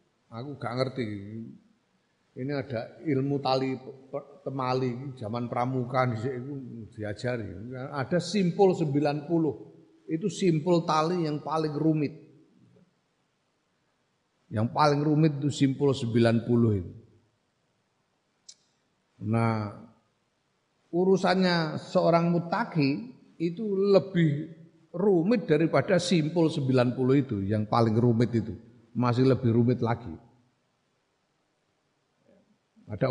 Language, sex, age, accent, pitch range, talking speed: Indonesian, male, 40-59, native, 130-190 Hz, 85 wpm